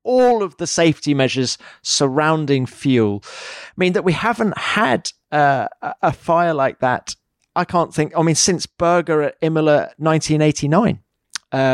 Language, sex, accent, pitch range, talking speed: English, male, British, 135-165 Hz, 140 wpm